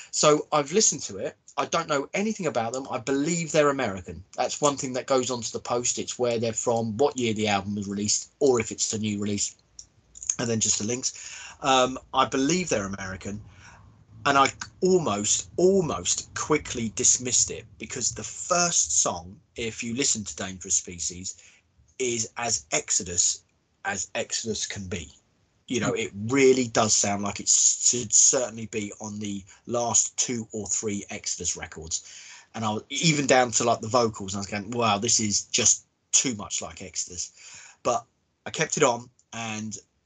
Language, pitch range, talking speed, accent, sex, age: English, 100-130 Hz, 175 wpm, British, male, 30-49